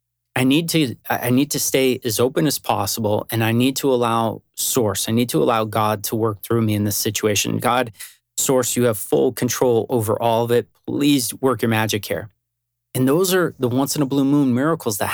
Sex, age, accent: male, 30-49, American